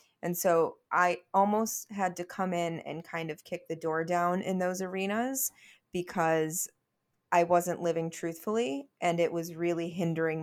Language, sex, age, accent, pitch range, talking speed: English, female, 20-39, American, 160-180 Hz, 160 wpm